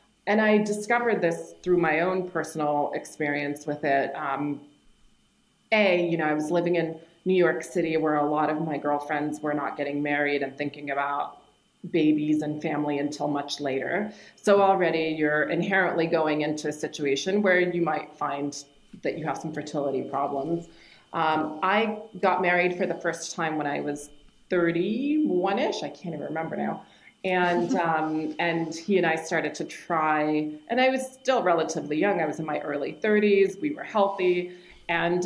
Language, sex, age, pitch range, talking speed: English, female, 30-49, 150-175 Hz, 170 wpm